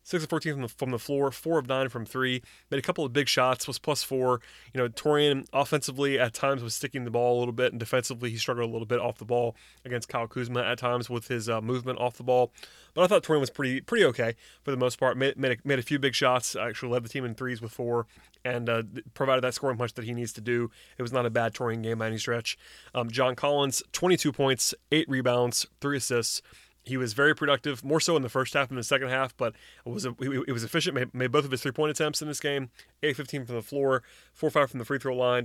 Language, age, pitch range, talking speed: English, 30-49, 120-140 Hz, 260 wpm